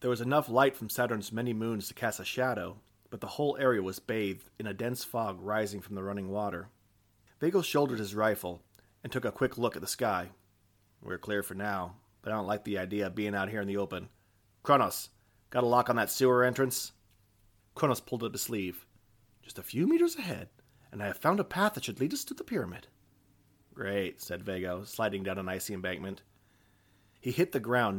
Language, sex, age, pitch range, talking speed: English, male, 30-49, 100-115 Hz, 210 wpm